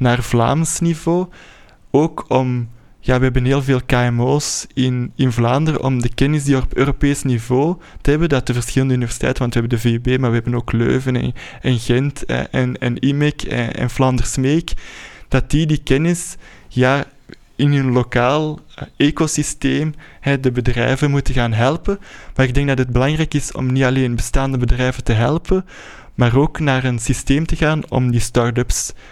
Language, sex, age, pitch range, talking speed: Dutch, male, 20-39, 120-140 Hz, 175 wpm